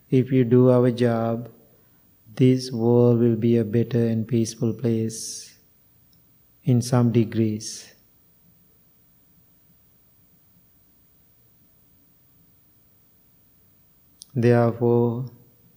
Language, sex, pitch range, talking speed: English, male, 120-130 Hz, 70 wpm